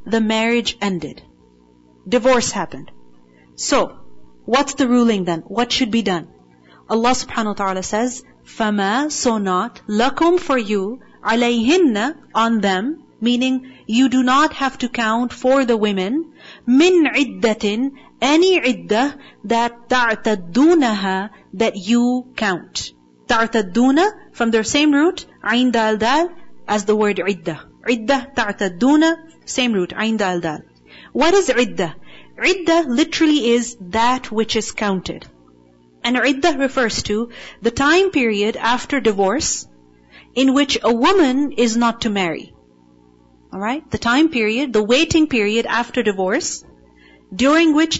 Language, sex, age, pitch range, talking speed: English, female, 40-59, 200-265 Hz, 130 wpm